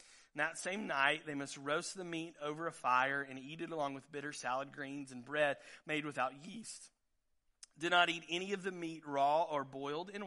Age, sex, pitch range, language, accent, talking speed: 30-49, male, 140-175 Hz, English, American, 205 wpm